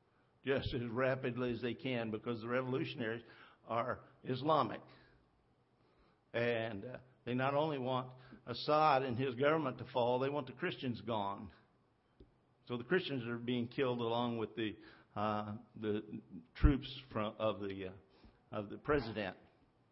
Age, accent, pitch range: 50-69, American, 120-140 Hz